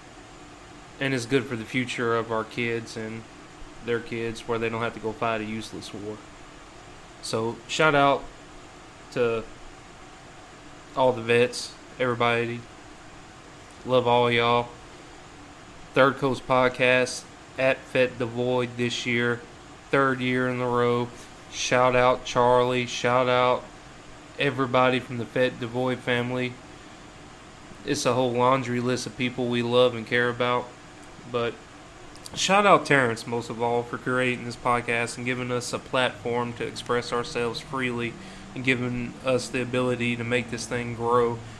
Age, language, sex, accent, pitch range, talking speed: 20-39, English, male, American, 120-130 Hz, 145 wpm